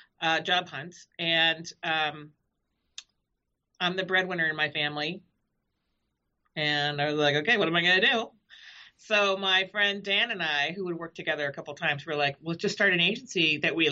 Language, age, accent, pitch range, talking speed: English, 40-59, American, 155-205 Hz, 190 wpm